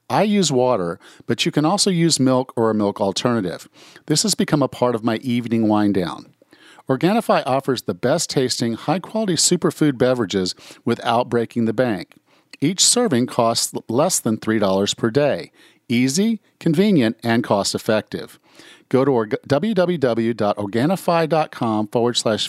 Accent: American